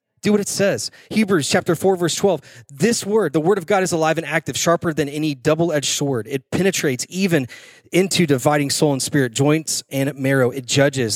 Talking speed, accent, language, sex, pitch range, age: 200 wpm, American, English, male, 120-155 Hz, 30-49